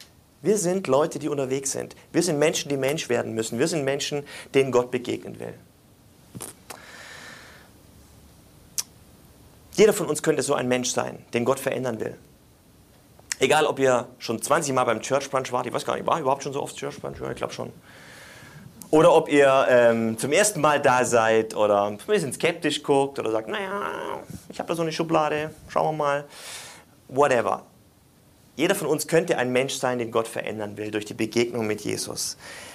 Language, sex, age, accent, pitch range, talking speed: German, male, 30-49, German, 120-150 Hz, 185 wpm